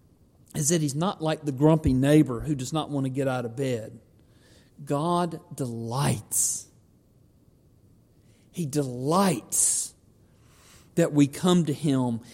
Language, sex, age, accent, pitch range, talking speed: English, male, 50-69, American, 120-165 Hz, 125 wpm